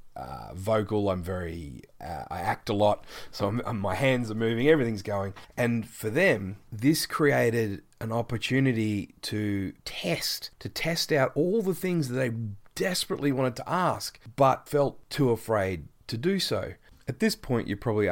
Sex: male